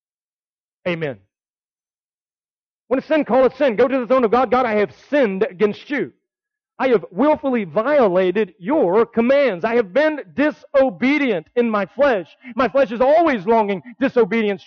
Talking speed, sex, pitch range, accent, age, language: 155 wpm, male, 165-255 Hz, American, 40-59, English